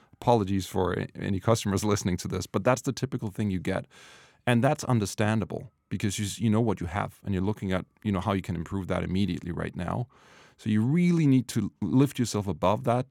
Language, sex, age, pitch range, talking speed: English, male, 40-59, 90-110 Hz, 210 wpm